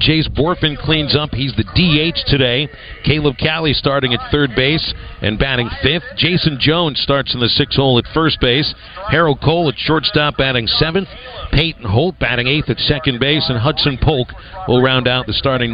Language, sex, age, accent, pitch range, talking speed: English, male, 50-69, American, 120-150 Hz, 185 wpm